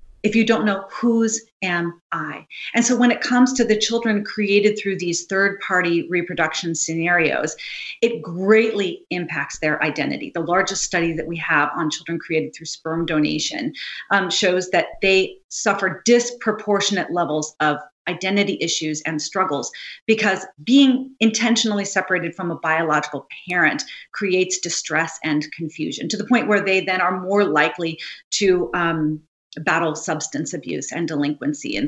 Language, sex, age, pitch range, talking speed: English, female, 40-59, 170-230 Hz, 150 wpm